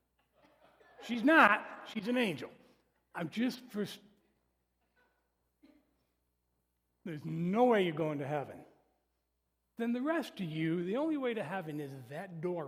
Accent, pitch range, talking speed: American, 145-215 Hz, 135 wpm